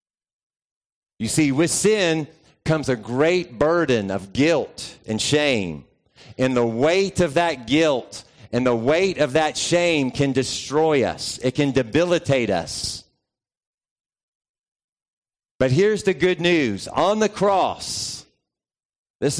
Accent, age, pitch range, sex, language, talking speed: American, 40-59, 115-175 Hz, male, English, 125 wpm